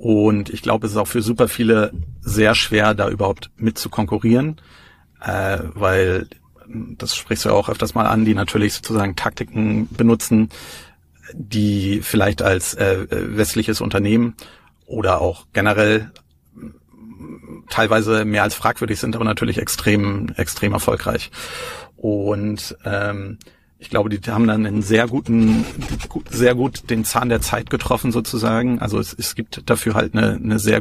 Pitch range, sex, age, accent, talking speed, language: 105-115 Hz, male, 40-59, German, 150 wpm, German